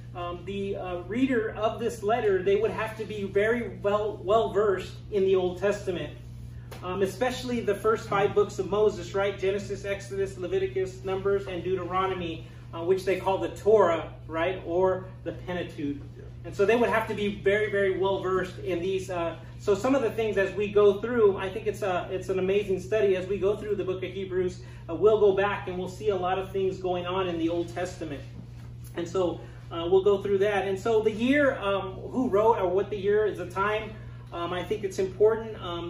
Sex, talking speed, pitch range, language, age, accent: male, 215 wpm, 170-210 Hz, English, 30-49, American